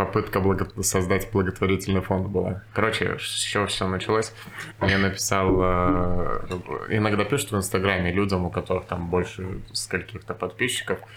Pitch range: 90-110 Hz